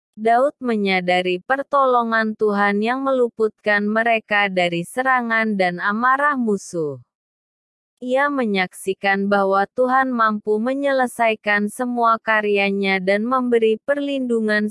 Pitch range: 195-250 Hz